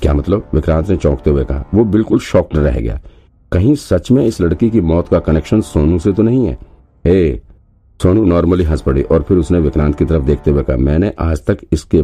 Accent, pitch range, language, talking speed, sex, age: native, 75-95 Hz, Hindi, 215 wpm, male, 50-69